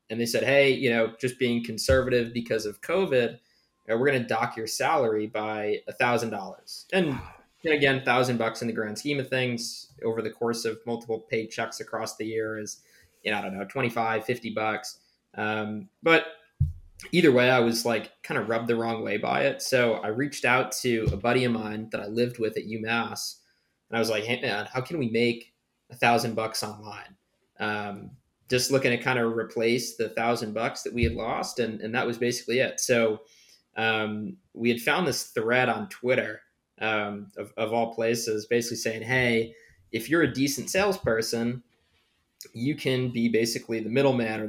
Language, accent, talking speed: English, American, 190 wpm